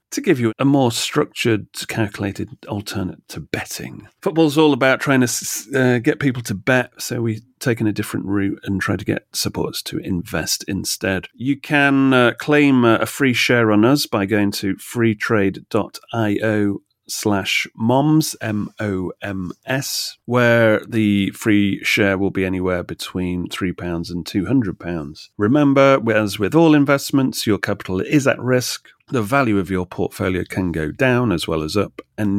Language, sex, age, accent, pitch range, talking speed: English, male, 40-59, British, 95-130 Hz, 155 wpm